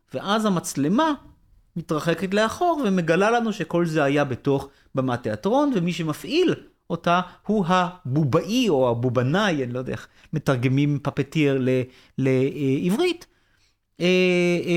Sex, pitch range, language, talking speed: male, 130-195 Hz, Hebrew, 105 wpm